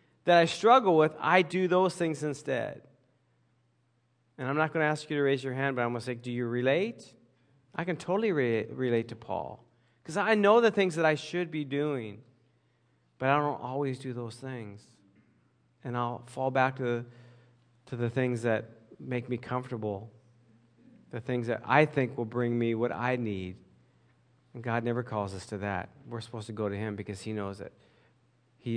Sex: male